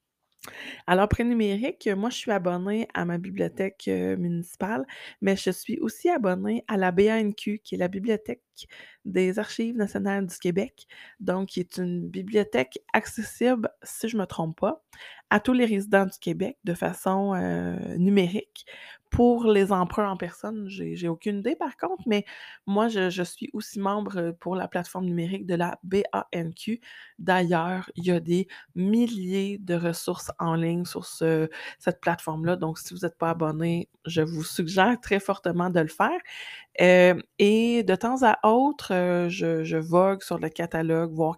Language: French